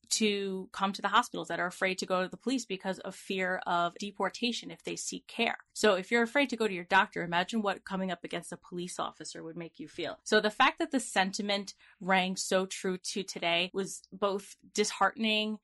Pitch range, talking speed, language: 185-210 Hz, 220 wpm, English